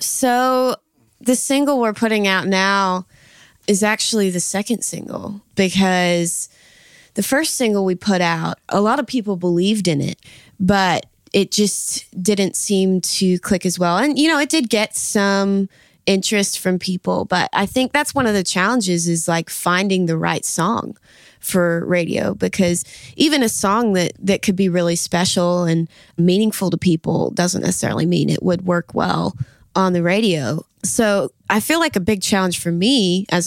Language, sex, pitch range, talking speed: English, female, 175-210 Hz, 170 wpm